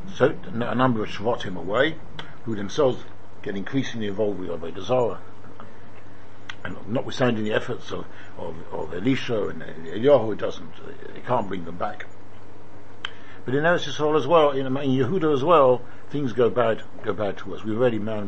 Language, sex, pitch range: English, male, 95-125 Hz